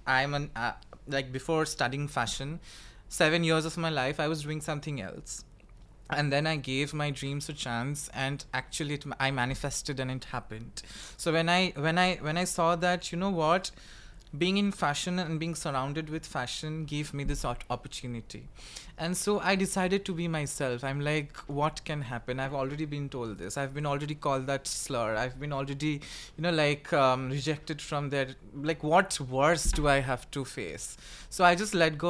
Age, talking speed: 20-39, 195 wpm